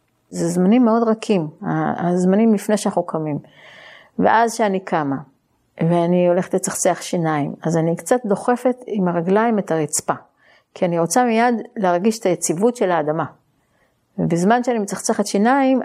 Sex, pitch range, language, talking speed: female, 170-220 Hz, Hebrew, 135 wpm